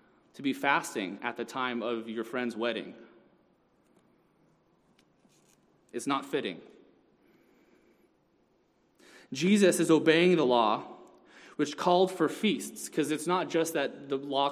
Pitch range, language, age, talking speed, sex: 125-160 Hz, English, 20-39, 120 wpm, male